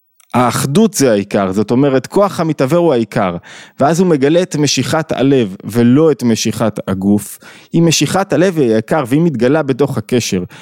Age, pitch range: 20-39, 120-160 Hz